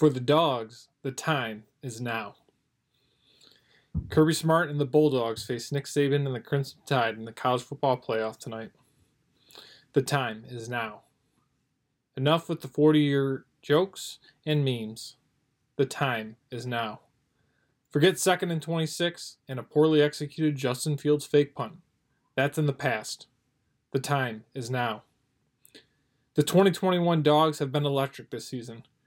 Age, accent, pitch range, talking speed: 20-39, American, 130-150 Hz, 140 wpm